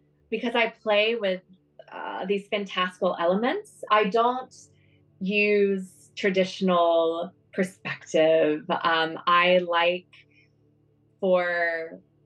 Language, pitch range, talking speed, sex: English, 170-205 Hz, 85 wpm, female